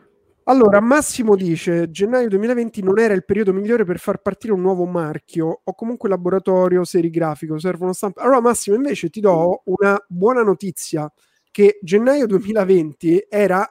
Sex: male